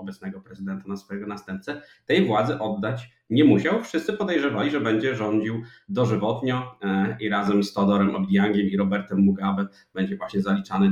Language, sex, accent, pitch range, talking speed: Polish, male, native, 100-120 Hz, 150 wpm